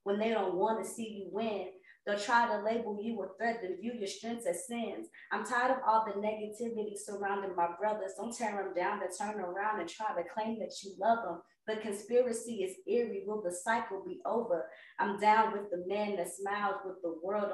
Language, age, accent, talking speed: English, 20-39, American, 220 wpm